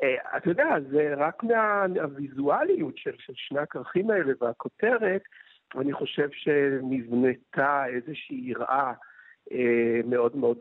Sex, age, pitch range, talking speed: male, 60-79, 125-180 Hz, 100 wpm